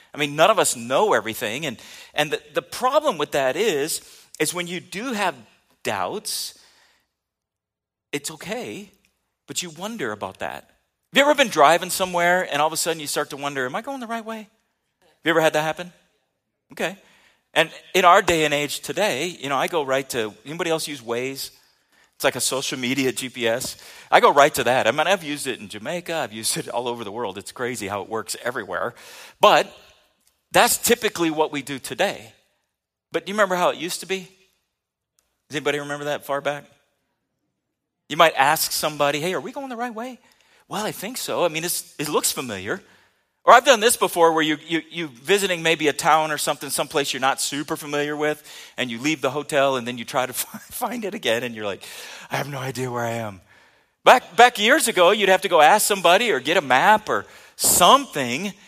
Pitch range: 140-190 Hz